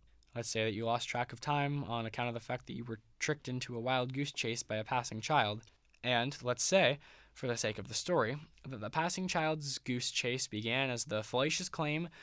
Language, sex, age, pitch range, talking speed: English, male, 10-29, 115-145 Hz, 225 wpm